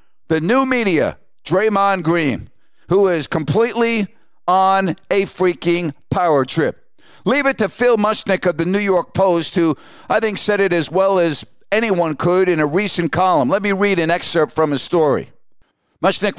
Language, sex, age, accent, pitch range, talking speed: English, male, 50-69, American, 160-195 Hz, 170 wpm